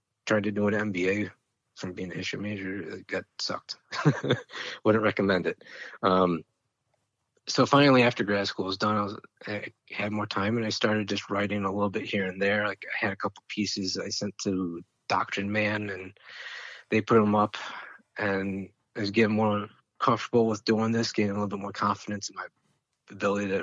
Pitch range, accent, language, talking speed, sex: 95-110 Hz, American, English, 190 wpm, male